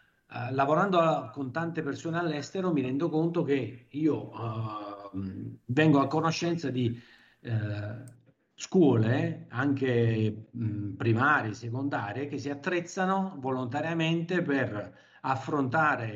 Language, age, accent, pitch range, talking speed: Italian, 50-69, native, 125-165 Hz, 90 wpm